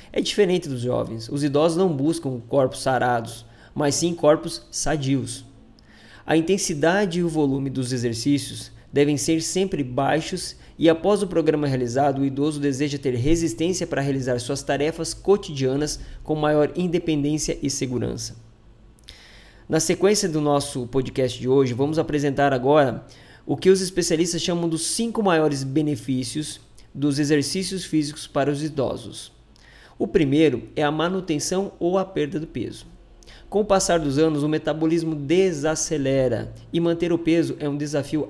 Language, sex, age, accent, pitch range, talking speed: Portuguese, male, 20-39, Brazilian, 135-170 Hz, 150 wpm